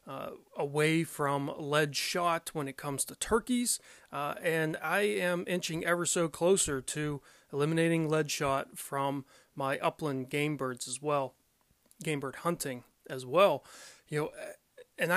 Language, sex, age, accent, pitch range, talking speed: English, male, 30-49, American, 135-175 Hz, 145 wpm